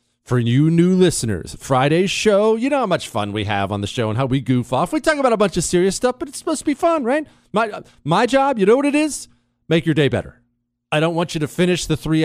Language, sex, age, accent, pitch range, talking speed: English, male, 40-59, American, 115-165 Hz, 275 wpm